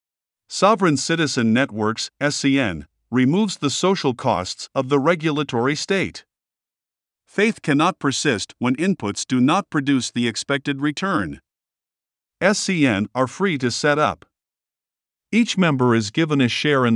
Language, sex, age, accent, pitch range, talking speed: English, male, 50-69, American, 120-160 Hz, 125 wpm